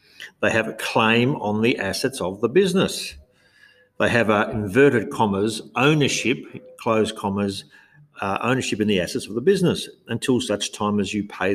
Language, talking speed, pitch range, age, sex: English, 165 wpm, 95-120 Hz, 50-69, male